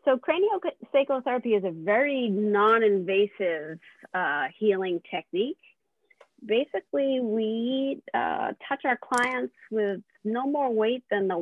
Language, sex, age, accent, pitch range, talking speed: English, female, 40-59, American, 185-250 Hz, 115 wpm